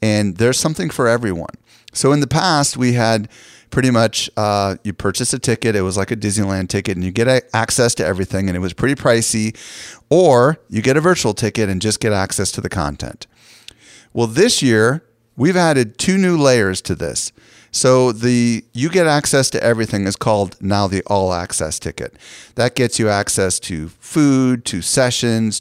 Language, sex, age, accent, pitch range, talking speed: English, male, 40-59, American, 95-120 Hz, 185 wpm